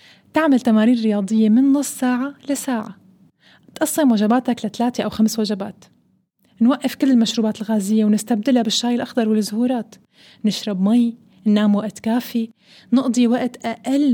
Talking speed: 125 wpm